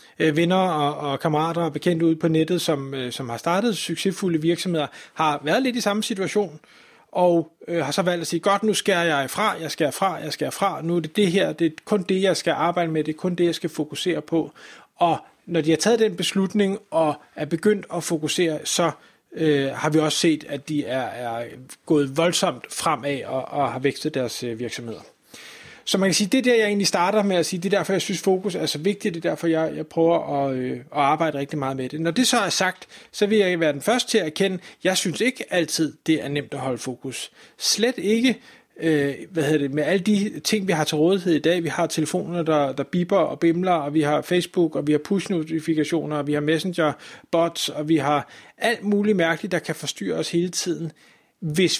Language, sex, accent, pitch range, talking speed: Danish, male, native, 150-185 Hz, 235 wpm